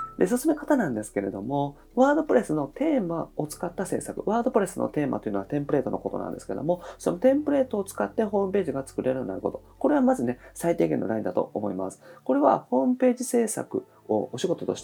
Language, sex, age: Japanese, male, 40-59